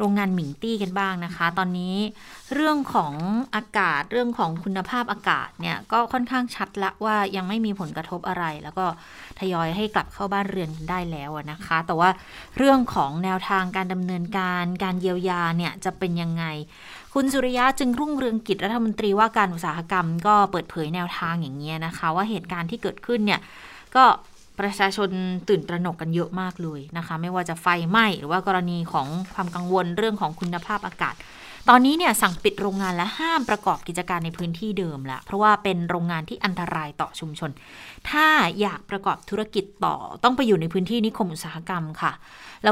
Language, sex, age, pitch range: Thai, female, 20-39, 175-210 Hz